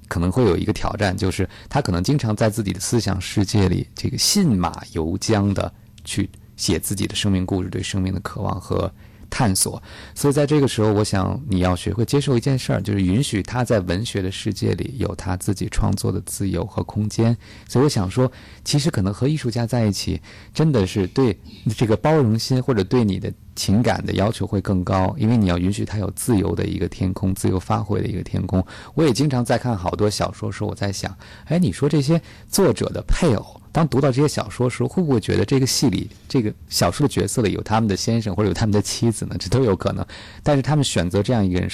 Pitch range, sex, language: 95-115 Hz, male, Chinese